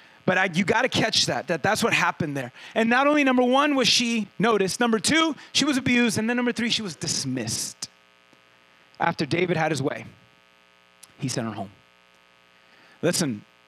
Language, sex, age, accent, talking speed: English, male, 30-49, American, 180 wpm